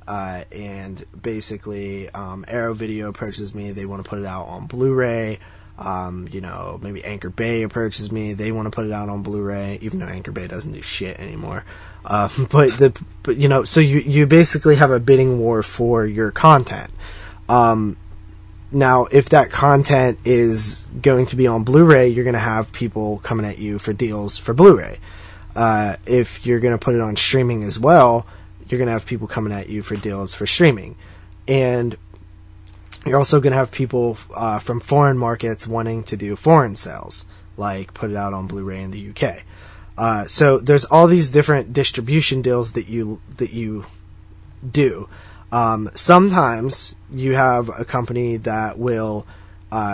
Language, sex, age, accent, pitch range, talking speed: English, male, 20-39, American, 100-125 Hz, 185 wpm